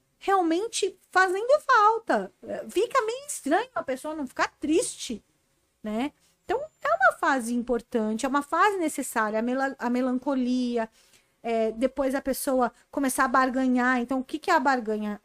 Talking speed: 155 wpm